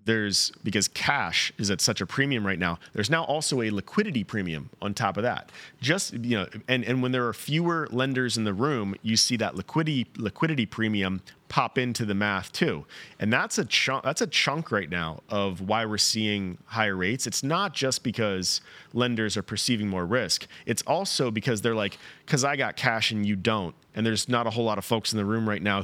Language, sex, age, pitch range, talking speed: English, male, 30-49, 100-125 Hz, 215 wpm